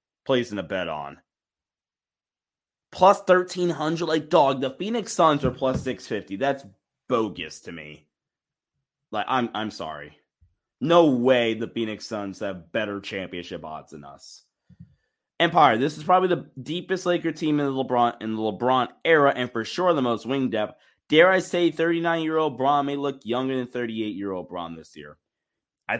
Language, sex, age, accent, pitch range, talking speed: English, male, 20-39, American, 110-145 Hz, 180 wpm